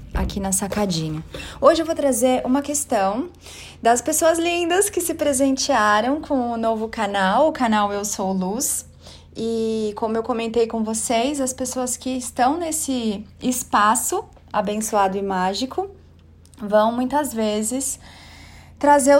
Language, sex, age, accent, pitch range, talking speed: Portuguese, female, 30-49, Brazilian, 220-290 Hz, 135 wpm